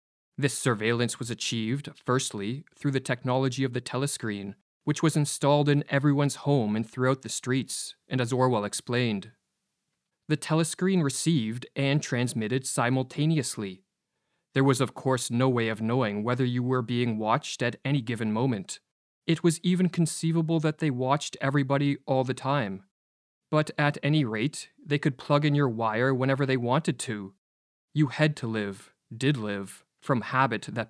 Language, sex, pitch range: English, male, 120-145 Hz